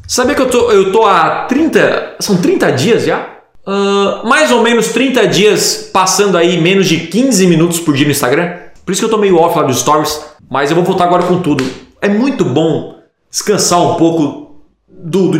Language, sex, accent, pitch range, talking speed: Portuguese, male, Brazilian, 145-210 Hz, 205 wpm